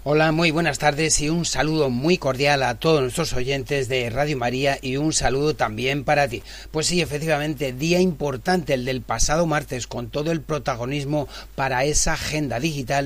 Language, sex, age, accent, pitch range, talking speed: Spanish, male, 40-59, Spanish, 135-165 Hz, 180 wpm